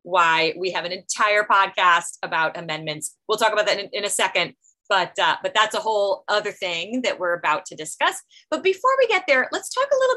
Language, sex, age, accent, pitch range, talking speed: English, female, 30-49, American, 155-235 Hz, 225 wpm